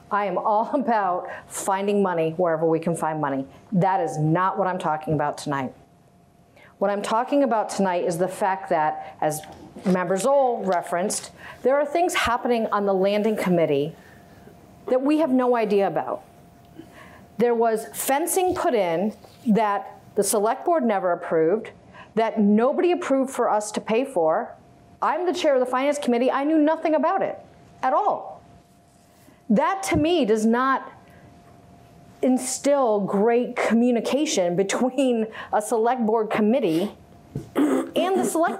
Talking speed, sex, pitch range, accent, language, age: 150 wpm, female, 195-265 Hz, American, English, 50-69